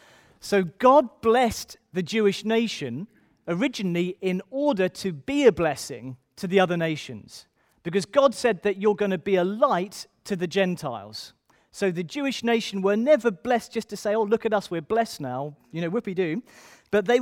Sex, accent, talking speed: male, British, 180 wpm